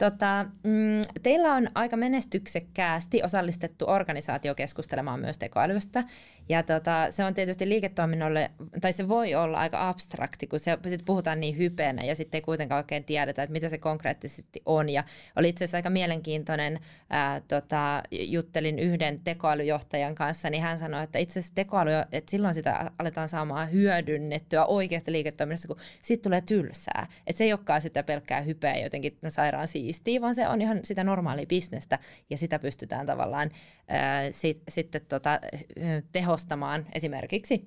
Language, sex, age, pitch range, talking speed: Finnish, female, 20-39, 150-185 Hz, 150 wpm